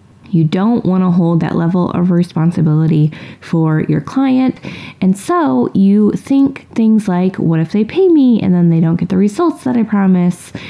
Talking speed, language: 185 wpm, English